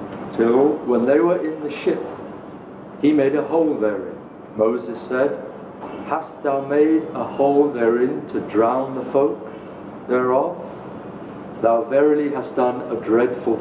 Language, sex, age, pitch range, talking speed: English, male, 50-69, 120-150 Hz, 135 wpm